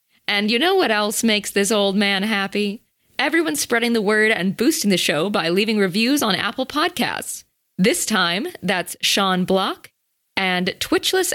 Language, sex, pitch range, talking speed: English, female, 180-225 Hz, 165 wpm